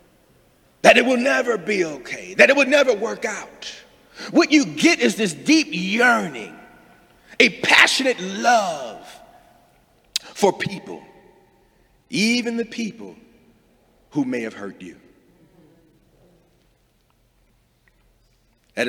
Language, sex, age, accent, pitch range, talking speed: English, male, 50-69, American, 165-235 Hz, 100 wpm